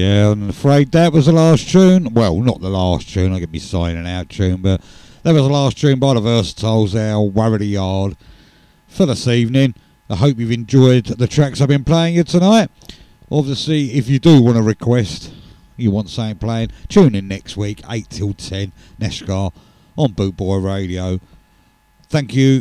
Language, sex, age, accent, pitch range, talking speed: English, male, 50-69, British, 95-135 Hz, 190 wpm